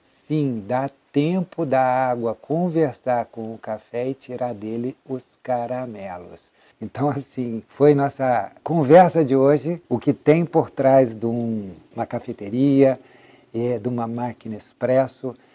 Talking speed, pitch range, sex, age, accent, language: 125 wpm, 110-140 Hz, male, 60-79, Brazilian, Portuguese